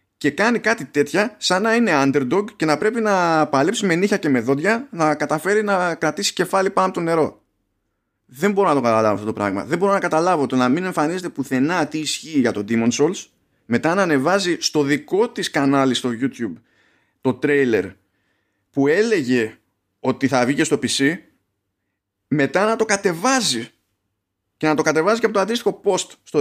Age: 30-49